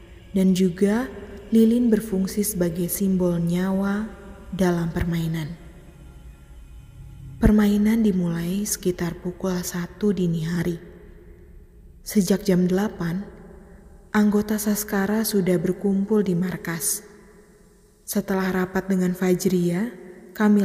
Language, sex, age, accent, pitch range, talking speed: Indonesian, female, 20-39, native, 170-200 Hz, 85 wpm